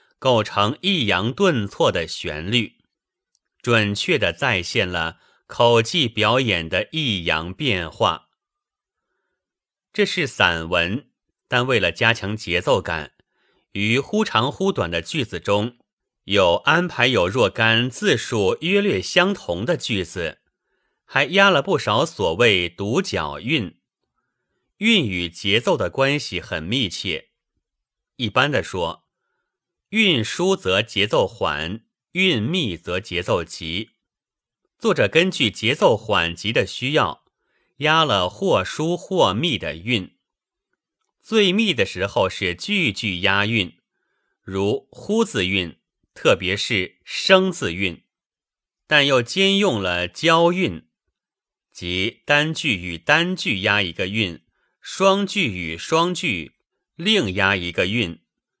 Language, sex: Chinese, male